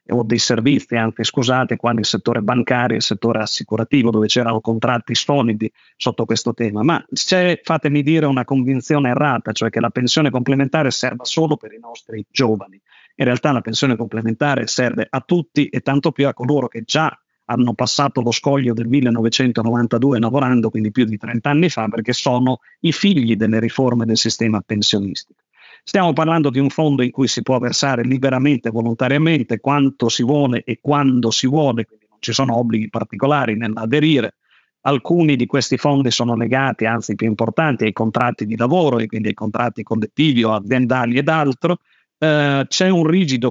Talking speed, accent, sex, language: 175 wpm, native, male, Italian